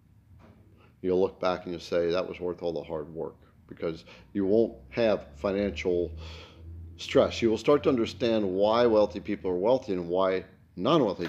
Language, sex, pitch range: English, male, 90-120 Hz